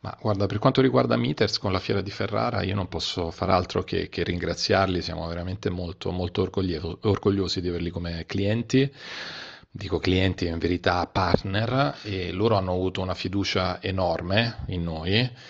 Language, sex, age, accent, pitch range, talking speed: Italian, male, 40-59, native, 85-105 Hz, 165 wpm